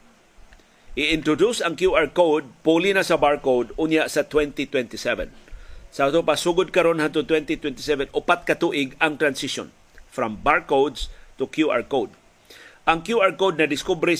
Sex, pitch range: male, 140-175 Hz